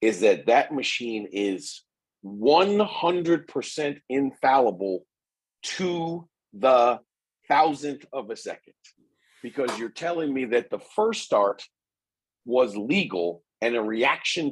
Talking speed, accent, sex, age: 110 wpm, American, male, 40-59